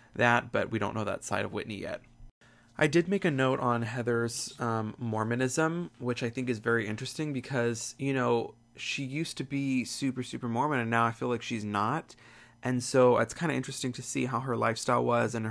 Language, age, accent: English, 20-39, American